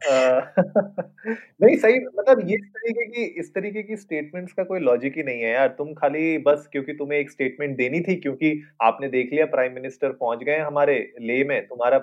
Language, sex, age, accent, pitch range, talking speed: Hindi, male, 30-49, native, 125-160 Hz, 100 wpm